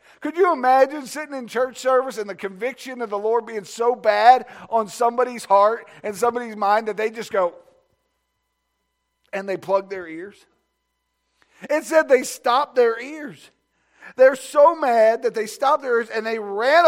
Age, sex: 50-69, male